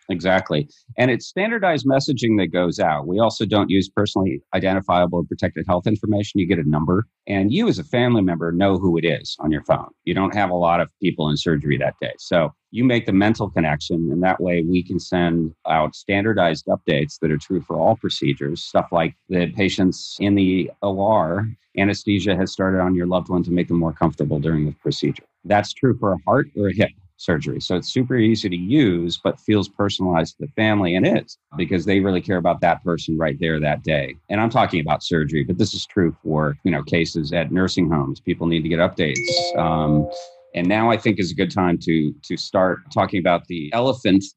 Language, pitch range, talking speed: English, 85-100 Hz, 215 wpm